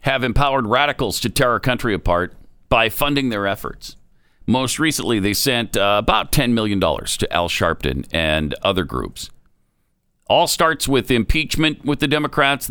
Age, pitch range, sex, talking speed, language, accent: 50-69, 100-145 Hz, male, 155 wpm, English, American